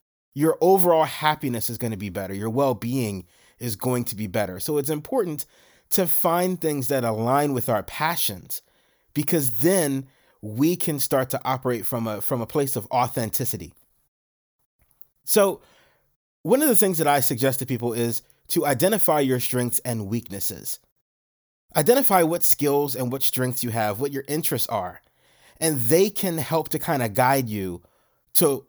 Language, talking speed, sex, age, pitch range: English, 165 wpm, male, 30-49, 115-145 Hz